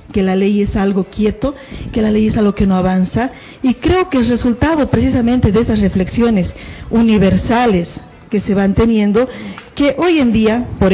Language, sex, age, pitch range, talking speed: Spanish, female, 40-59, 185-235 Hz, 180 wpm